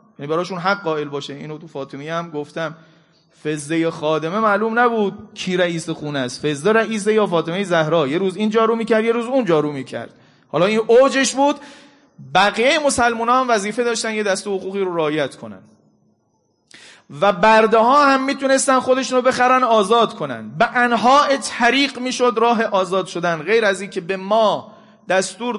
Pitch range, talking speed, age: 160-225 Hz, 170 wpm, 30-49